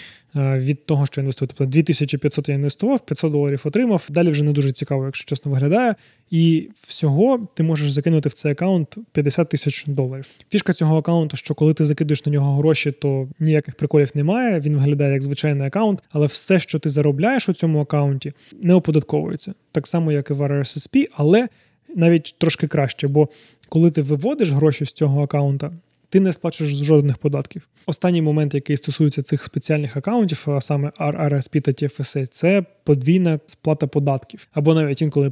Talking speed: 175 wpm